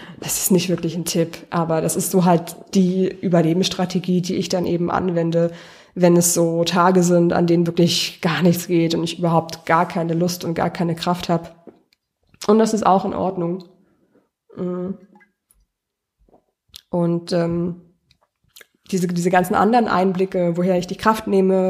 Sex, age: female, 20-39